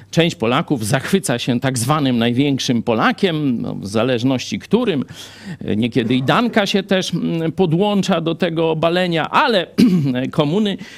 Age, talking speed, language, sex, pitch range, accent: 50-69, 125 wpm, Polish, male, 135-200 Hz, native